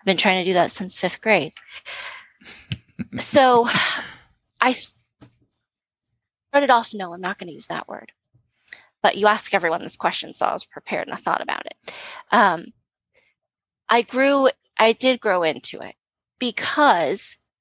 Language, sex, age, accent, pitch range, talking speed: English, female, 20-39, American, 175-220 Hz, 150 wpm